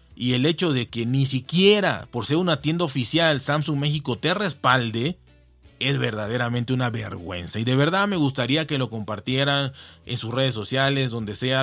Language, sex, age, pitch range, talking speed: Spanish, male, 30-49, 120-175 Hz, 175 wpm